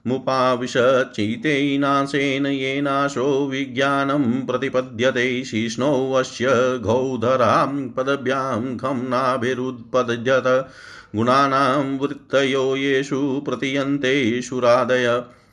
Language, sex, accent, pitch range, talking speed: Hindi, male, native, 125-140 Hz, 45 wpm